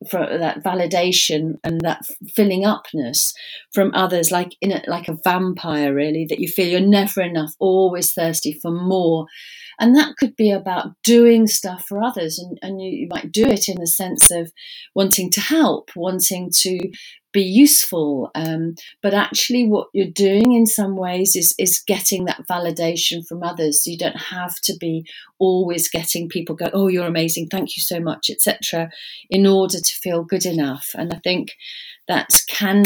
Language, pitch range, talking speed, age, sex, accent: English, 165-200 Hz, 175 wpm, 40-59, female, British